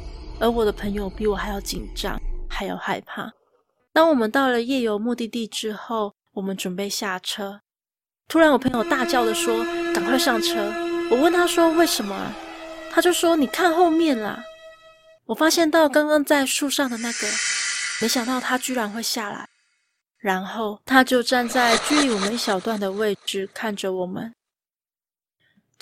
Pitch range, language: 220-300 Hz, Chinese